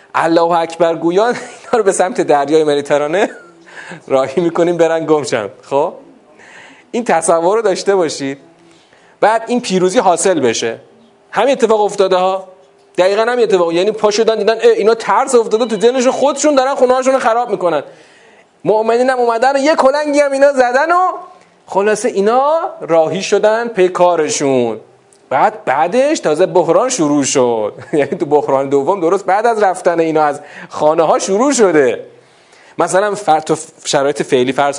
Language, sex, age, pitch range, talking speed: Persian, male, 30-49, 155-235 Hz, 145 wpm